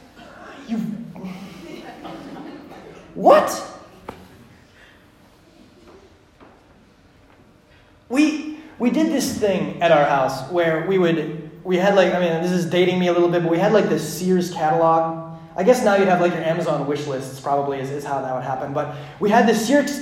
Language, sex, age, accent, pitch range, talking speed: English, male, 30-49, American, 175-225 Hz, 160 wpm